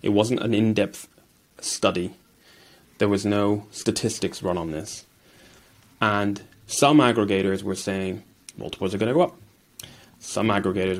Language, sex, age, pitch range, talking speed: English, male, 20-39, 95-125 Hz, 135 wpm